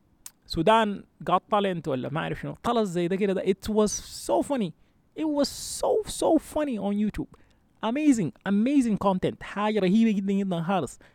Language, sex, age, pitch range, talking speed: Arabic, male, 20-39, 145-215 Hz, 165 wpm